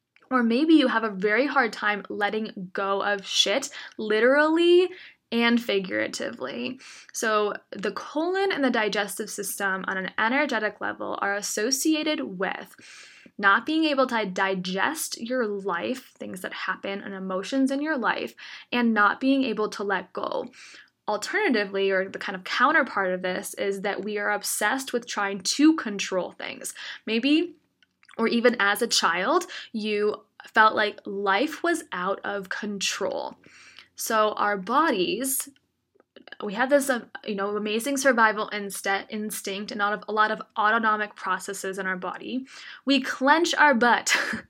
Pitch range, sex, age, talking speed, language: 205-275 Hz, female, 10-29, 145 wpm, English